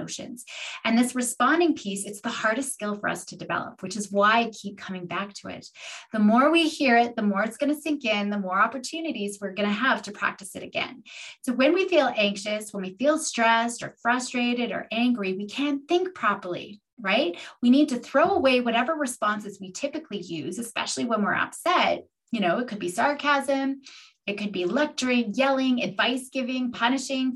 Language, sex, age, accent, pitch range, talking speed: English, female, 20-39, American, 215-280 Hz, 200 wpm